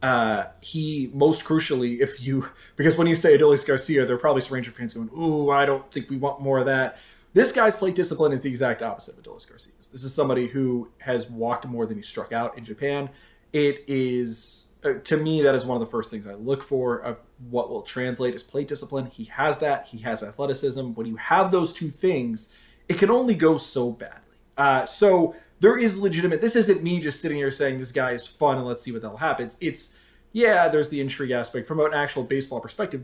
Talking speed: 230 wpm